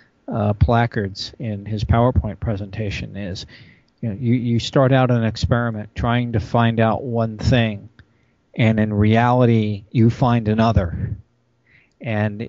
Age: 40-59